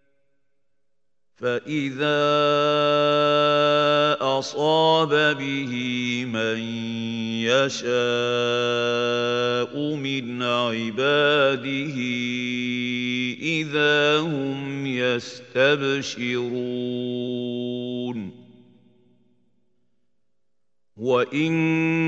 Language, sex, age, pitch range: Arabic, male, 50-69, 125-150 Hz